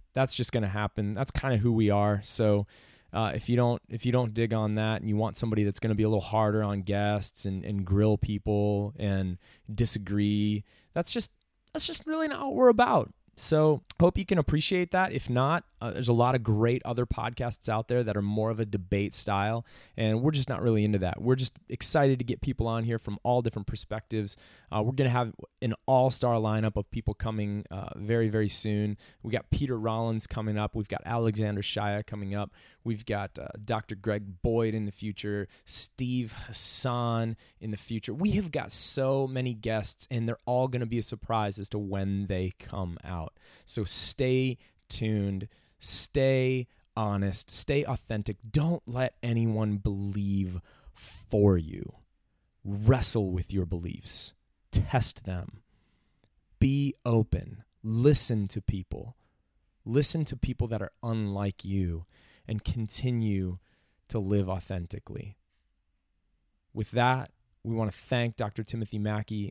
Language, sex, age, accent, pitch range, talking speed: English, male, 20-39, American, 100-120 Hz, 175 wpm